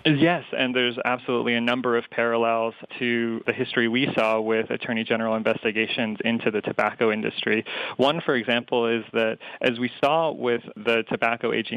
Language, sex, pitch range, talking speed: English, male, 110-125 Hz, 170 wpm